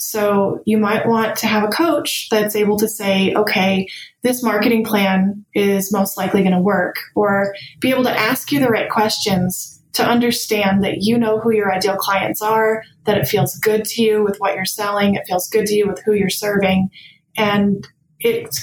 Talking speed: 200 wpm